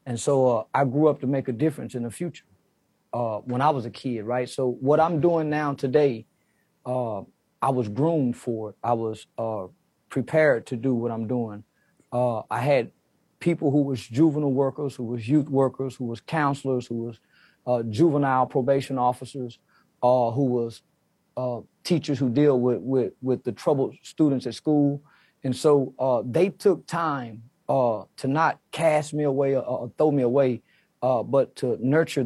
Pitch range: 125-150 Hz